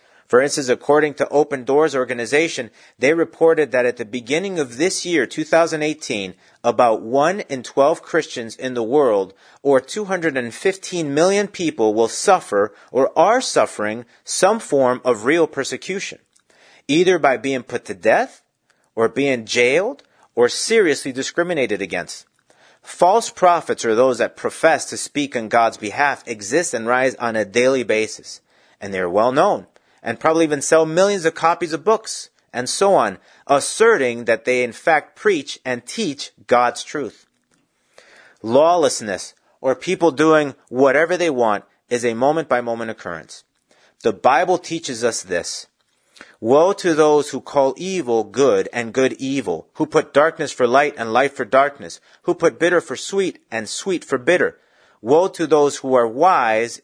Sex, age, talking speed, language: male, 40-59, 155 wpm, English